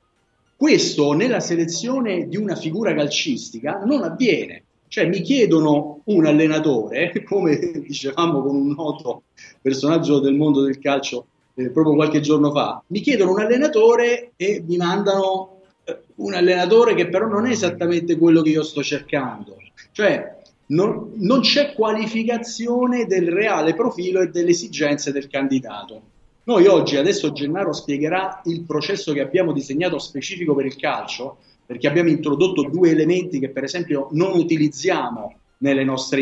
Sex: male